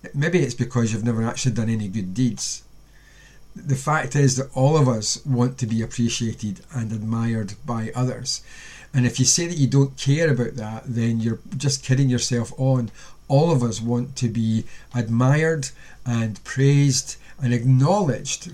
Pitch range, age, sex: 115-135 Hz, 40-59, male